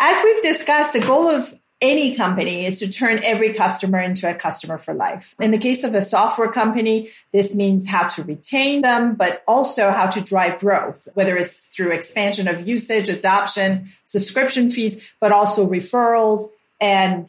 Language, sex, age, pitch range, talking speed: English, female, 40-59, 190-235 Hz, 175 wpm